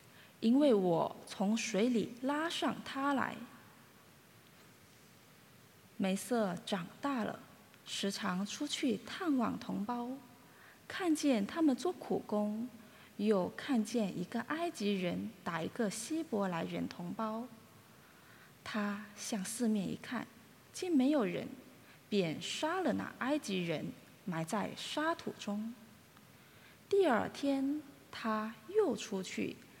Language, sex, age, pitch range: English, female, 20-39, 195-265 Hz